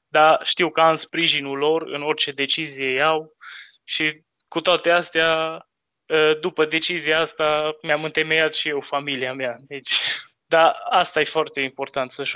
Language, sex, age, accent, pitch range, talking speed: Romanian, male, 20-39, native, 145-165 Hz, 140 wpm